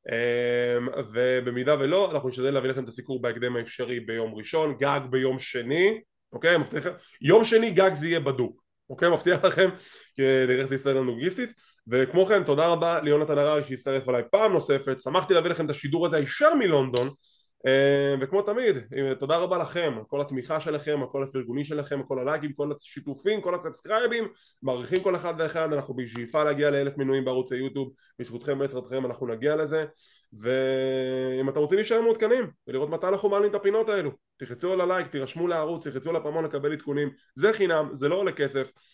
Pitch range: 130-175 Hz